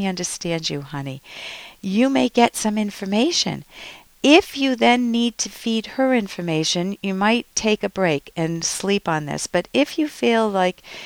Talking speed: 165 wpm